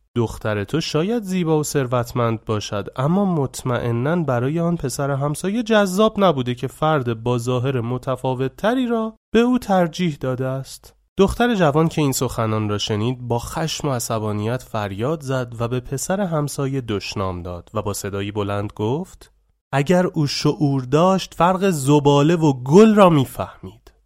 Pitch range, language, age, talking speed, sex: 115-165 Hz, Persian, 30-49, 150 wpm, male